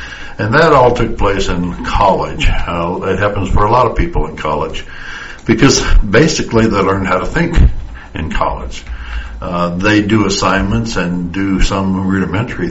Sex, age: male, 60-79